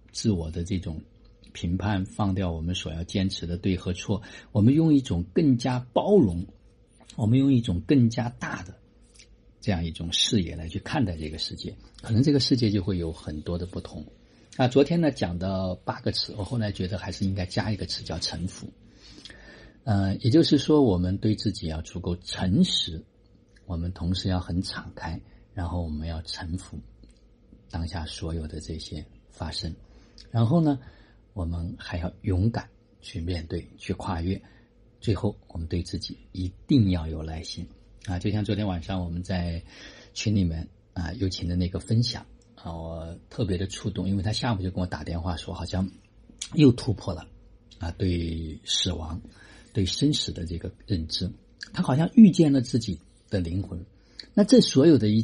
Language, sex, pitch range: Chinese, male, 85-115 Hz